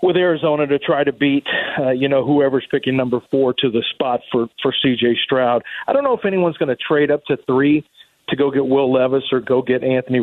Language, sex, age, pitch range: English, male, 40-59, 130-160 Hz